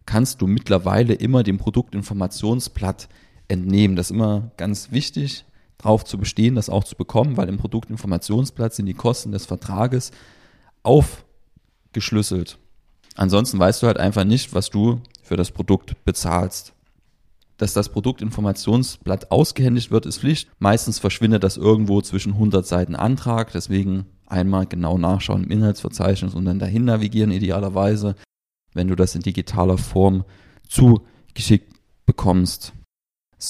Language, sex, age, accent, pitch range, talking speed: German, male, 30-49, German, 95-115 Hz, 135 wpm